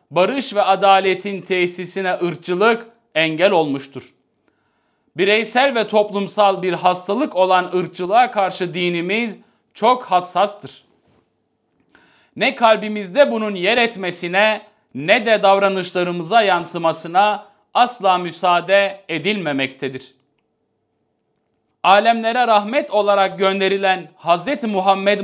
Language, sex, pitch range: Turkish, male, 180-215 Hz